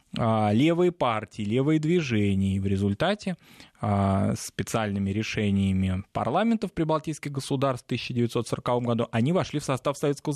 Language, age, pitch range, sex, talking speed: Russian, 20-39, 110-150 Hz, male, 115 wpm